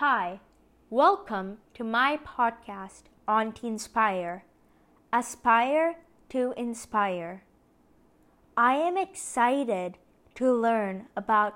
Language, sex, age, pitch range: English, female, 20-39, 205-265 Hz